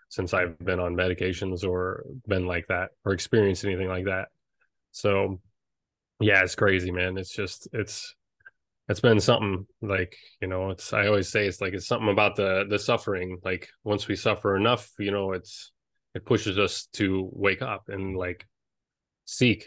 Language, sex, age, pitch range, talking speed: English, male, 20-39, 95-105 Hz, 175 wpm